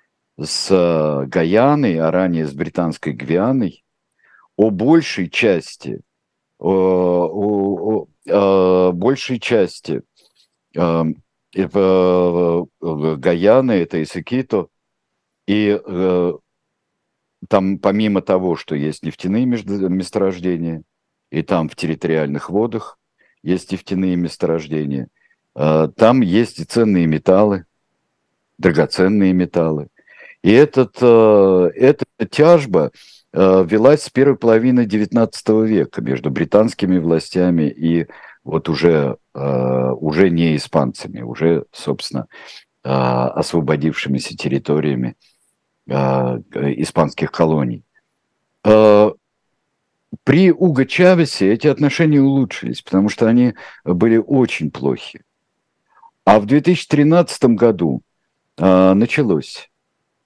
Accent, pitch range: native, 80-110 Hz